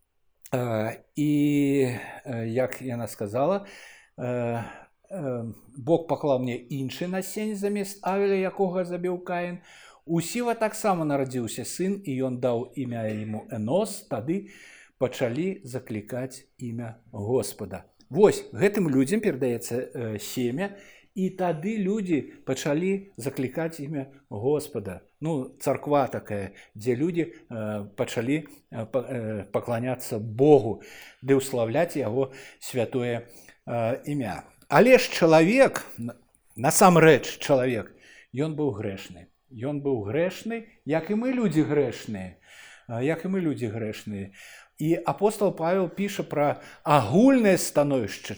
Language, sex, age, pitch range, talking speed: Russian, male, 60-79, 120-180 Hz, 110 wpm